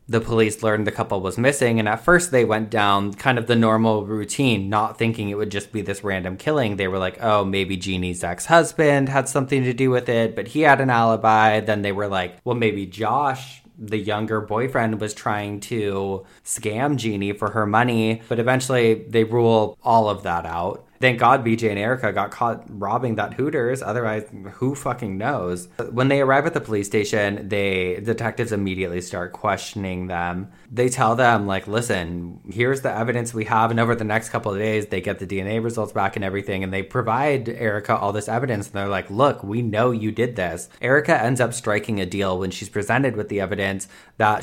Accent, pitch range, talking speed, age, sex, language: American, 100-120 Hz, 205 wpm, 20-39, male, English